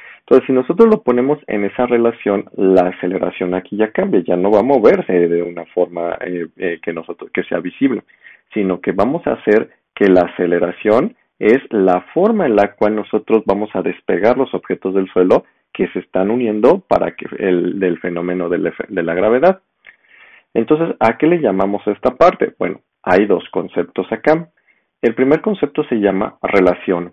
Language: Spanish